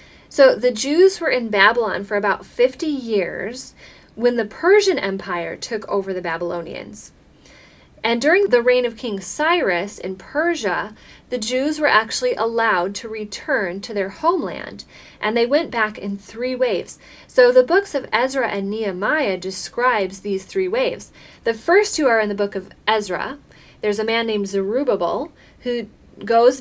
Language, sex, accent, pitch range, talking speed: English, female, American, 195-260 Hz, 160 wpm